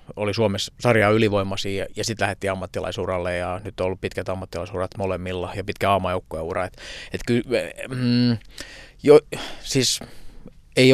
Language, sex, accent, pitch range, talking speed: Finnish, male, native, 90-105 Hz, 135 wpm